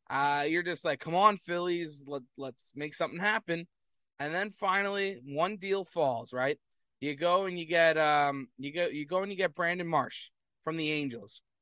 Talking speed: 190 wpm